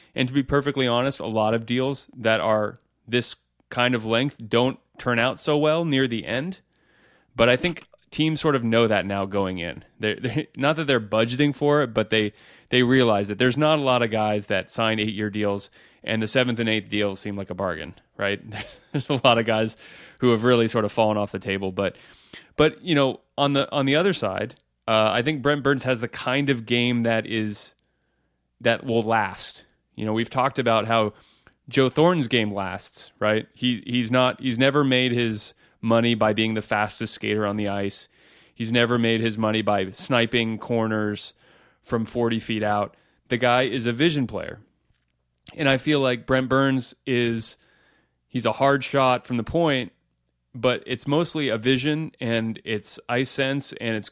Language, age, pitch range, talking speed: English, 30-49, 110-135 Hz, 195 wpm